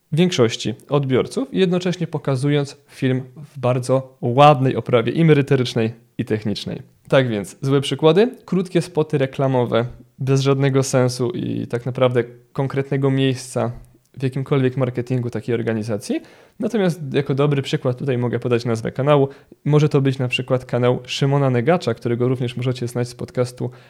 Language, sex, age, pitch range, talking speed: Polish, male, 20-39, 120-145 Hz, 140 wpm